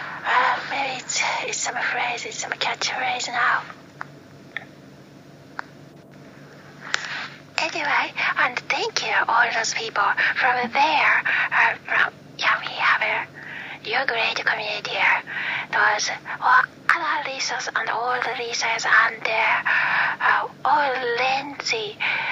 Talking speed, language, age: 115 wpm, English, 30-49